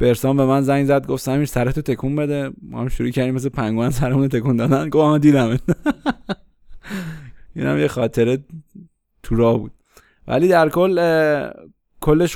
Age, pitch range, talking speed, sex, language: 20-39, 115-140 Hz, 155 wpm, male, Persian